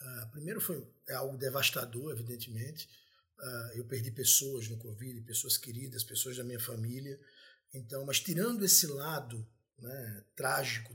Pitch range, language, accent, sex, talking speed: 125-170 Hz, Portuguese, Brazilian, male, 135 wpm